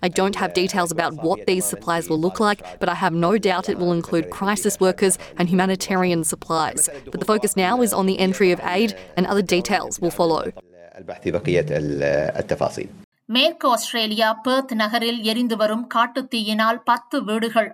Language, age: Tamil, 20-39